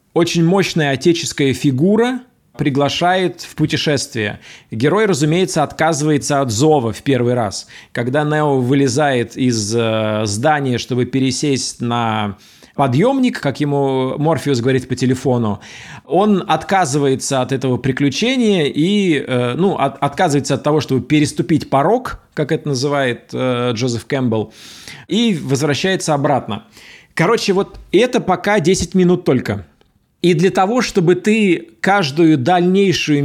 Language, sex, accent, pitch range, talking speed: Russian, male, native, 130-180 Hz, 115 wpm